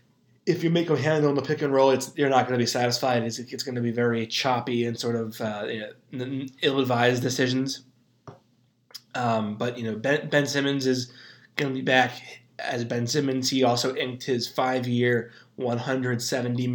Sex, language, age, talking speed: male, English, 20-39, 195 wpm